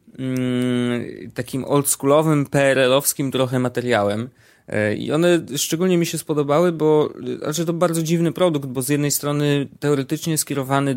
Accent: native